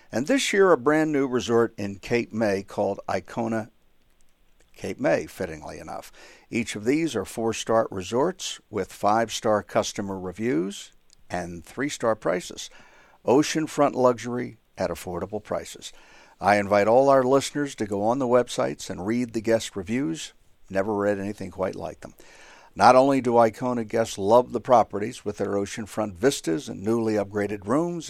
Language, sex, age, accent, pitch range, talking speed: English, male, 60-79, American, 100-130 Hz, 150 wpm